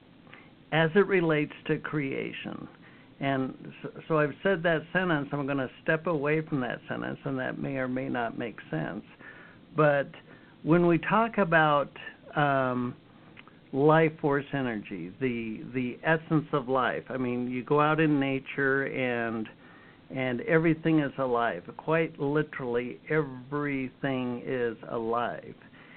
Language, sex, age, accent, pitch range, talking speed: English, male, 60-79, American, 130-160 Hz, 135 wpm